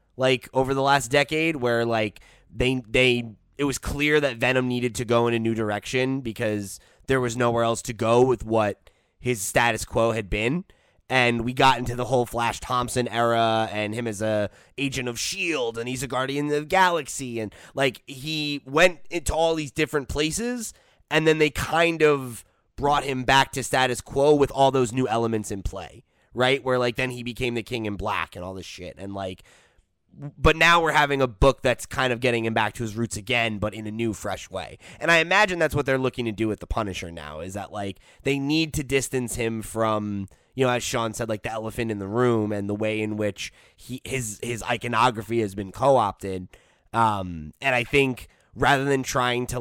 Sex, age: male, 20-39